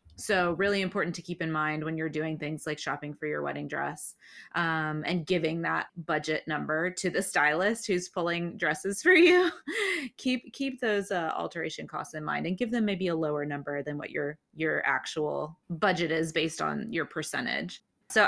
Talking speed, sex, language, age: 190 wpm, female, English, 20-39